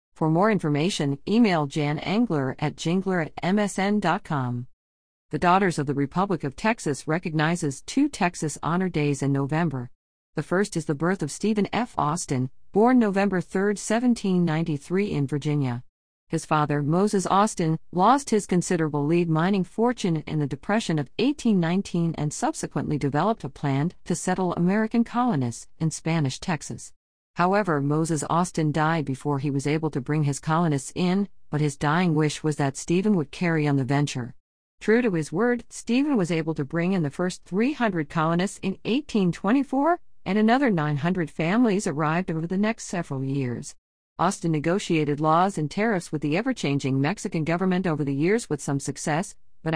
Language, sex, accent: English, female, American